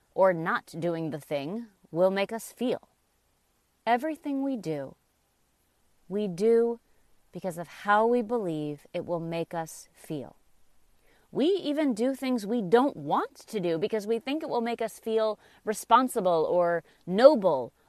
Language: English